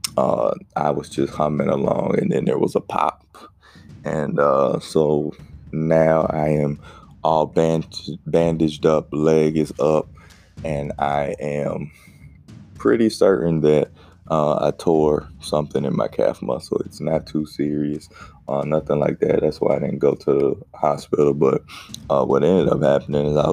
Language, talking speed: English, 160 wpm